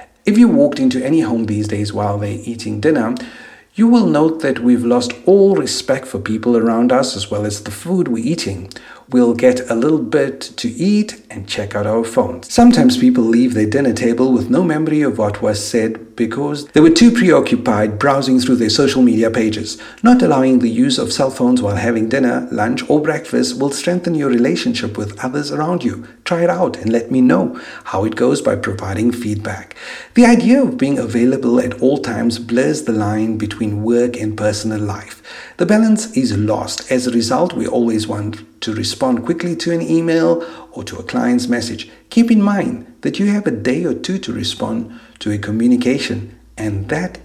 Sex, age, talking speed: male, 50-69, 195 wpm